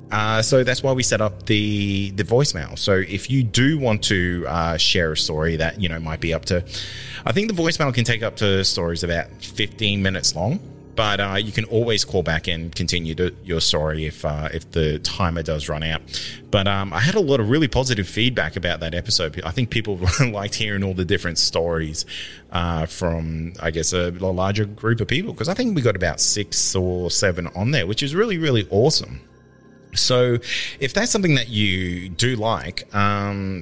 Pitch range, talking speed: 85-115 Hz, 205 wpm